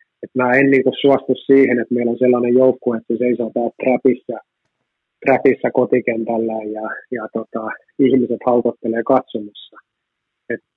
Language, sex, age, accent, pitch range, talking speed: Finnish, male, 30-49, native, 120-130 Hz, 130 wpm